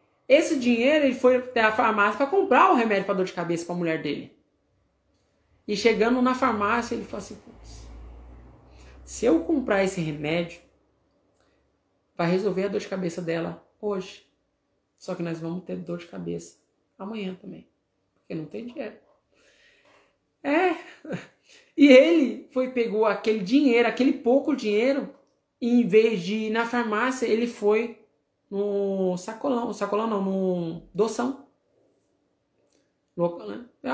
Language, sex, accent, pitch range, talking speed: Portuguese, male, Brazilian, 185-265 Hz, 140 wpm